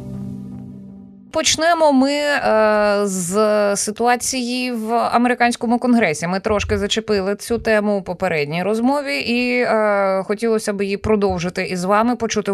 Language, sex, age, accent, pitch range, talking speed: Ukrainian, female, 20-39, native, 170-230 Hz, 110 wpm